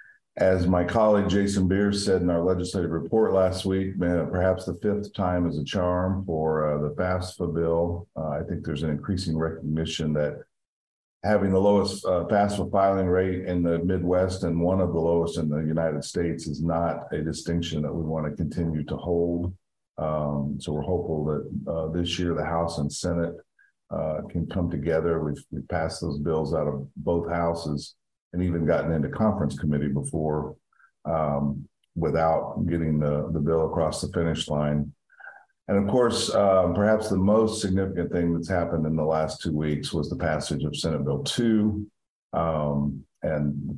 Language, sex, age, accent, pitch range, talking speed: English, male, 50-69, American, 75-90 Hz, 180 wpm